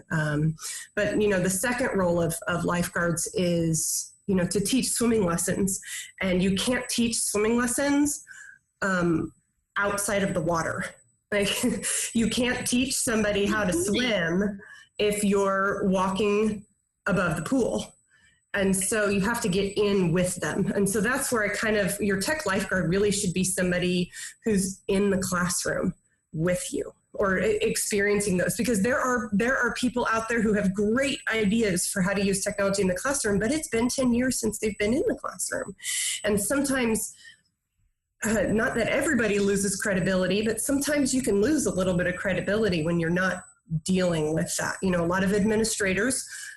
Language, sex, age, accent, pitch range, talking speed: English, female, 20-39, American, 185-230 Hz, 175 wpm